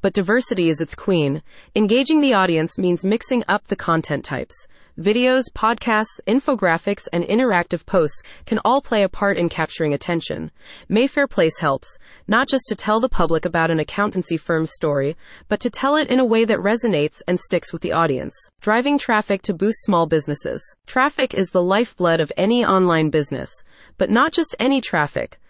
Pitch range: 170-230 Hz